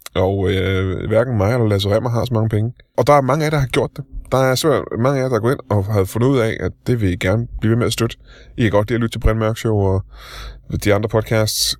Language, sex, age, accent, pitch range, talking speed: Danish, male, 20-39, native, 95-120 Hz, 295 wpm